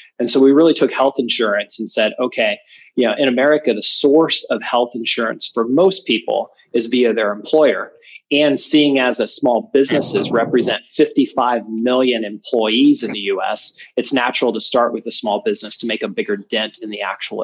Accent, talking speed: American, 190 wpm